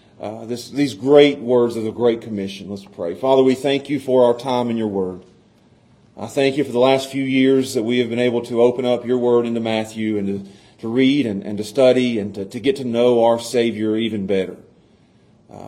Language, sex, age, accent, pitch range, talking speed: English, male, 40-59, American, 110-130 Hz, 230 wpm